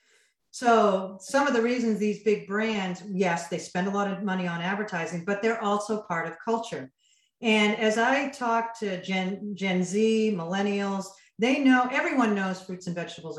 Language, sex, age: English, female, 40-59